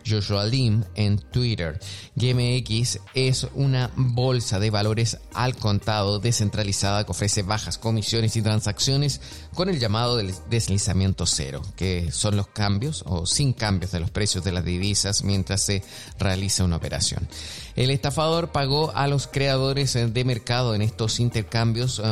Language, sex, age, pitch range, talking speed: Spanish, male, 30-49, 105-135 Hz, 145 wpm